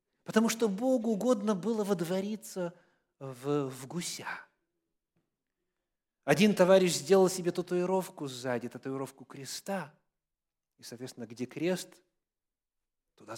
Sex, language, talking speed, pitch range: male, English, 100 wpm, 145-220 Hz